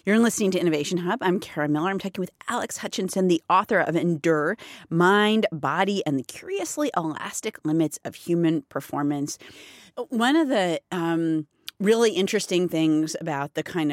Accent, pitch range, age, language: American, 165-245 Hz, 40-59, English